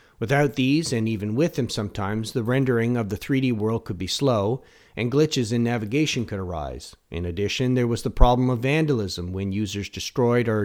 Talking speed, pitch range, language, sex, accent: 190 wpm, 105-130 Hz, English, male, American